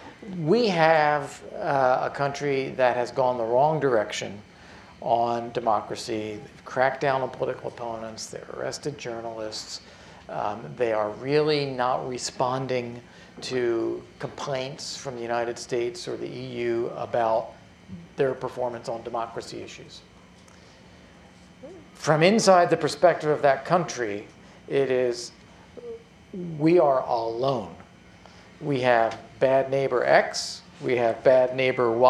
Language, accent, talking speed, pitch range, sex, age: English, American, 120 wpm, 120-160 Hz, male, 50-69